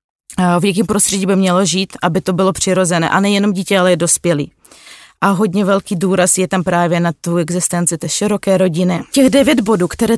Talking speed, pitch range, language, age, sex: 195 wpm, 185-215 Hz, Czech, 20-39, female